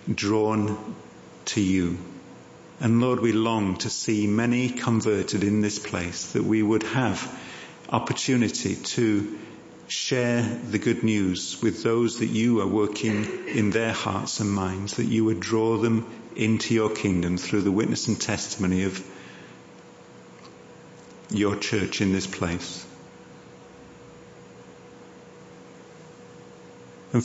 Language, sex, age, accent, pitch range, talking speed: English, male, 50-69, British, 100-115 Hz, 120 wpm